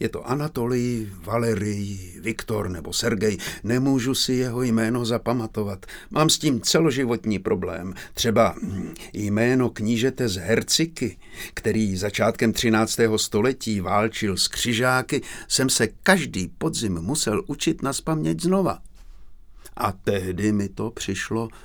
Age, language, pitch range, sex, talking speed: 60-79, Czech, 100-120 Hz, male, 115 wpm